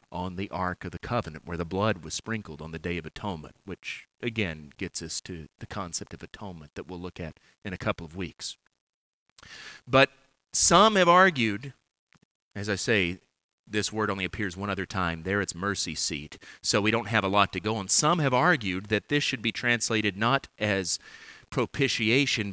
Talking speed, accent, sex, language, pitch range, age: 190 wpm, American, male, English, 95-125 Hz, 30-49